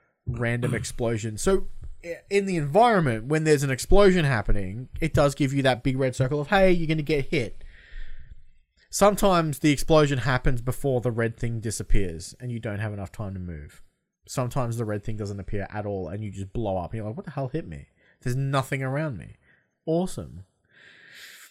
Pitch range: 115-150 Hz